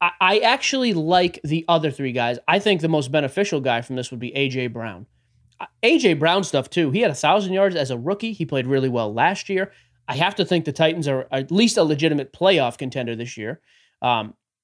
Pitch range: 135-185 Hz